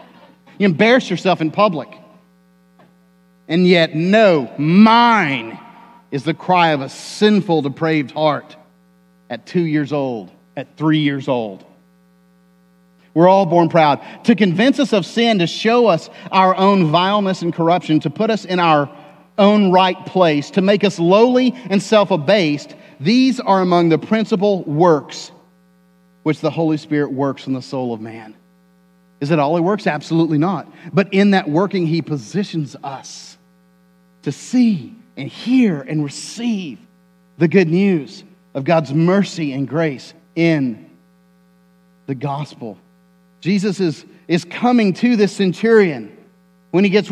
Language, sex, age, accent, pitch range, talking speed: English, male, 40-59, American, 130-200 Hz, 145 wpm